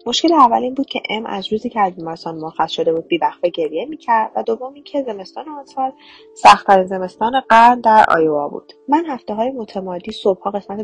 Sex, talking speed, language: female, 190 wpm, Persian